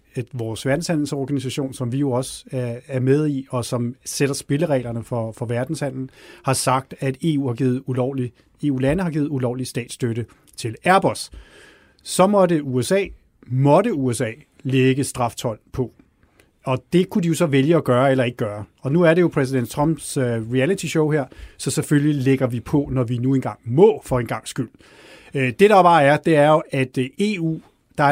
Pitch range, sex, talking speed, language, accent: 130-170 Hz, male, 180 wpm, Danish, native